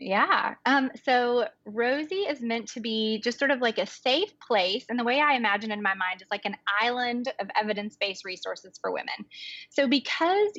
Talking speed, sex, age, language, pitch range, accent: 195 wpm, female, 20-39, English, 205-245 Hz, American